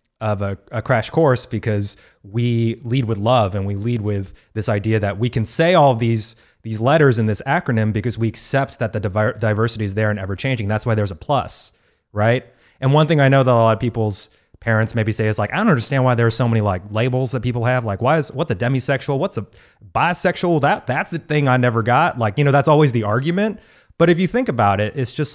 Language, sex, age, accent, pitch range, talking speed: English, male, 30-49, American, 105-130 Hz, 245 wpm